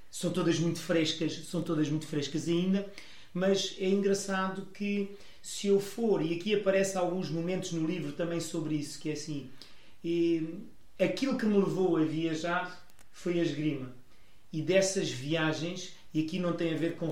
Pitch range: 150-170 Hz